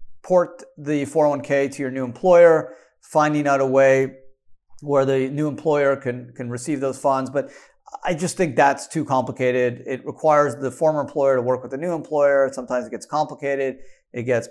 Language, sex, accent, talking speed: English, male, American, 180 wpm